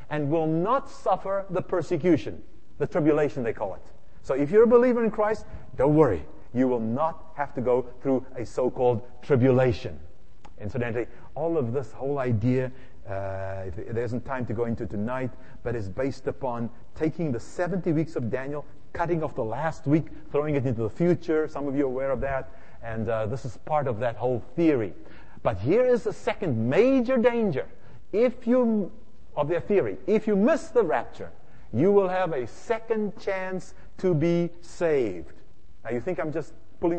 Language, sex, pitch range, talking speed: English, male, 130-190 Hz, 180 wpm